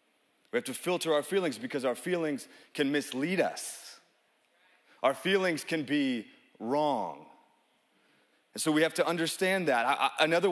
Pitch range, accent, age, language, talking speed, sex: 140-200 Hz, American, 30-49, English, 145 wpm, male